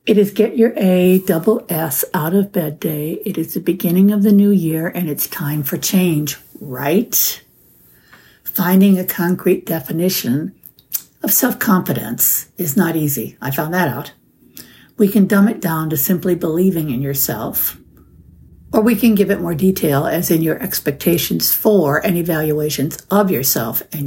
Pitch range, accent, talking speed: 155-205 Hz, American, 160 wpm